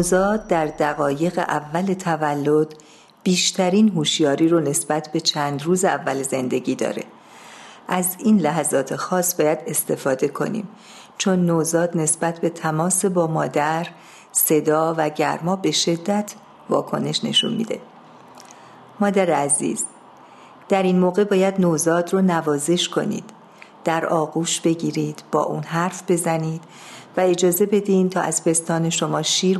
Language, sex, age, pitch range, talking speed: Persian, female, 50-69, 160-195 Hz, 125 wpm